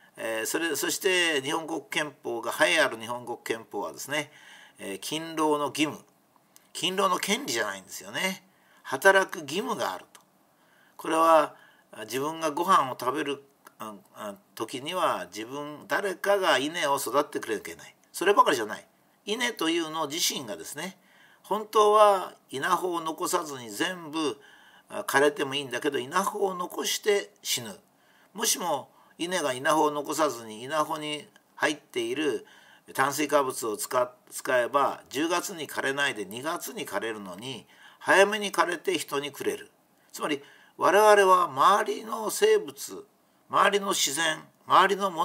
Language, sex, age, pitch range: Japanese, male, 50-69, 150-215 Hz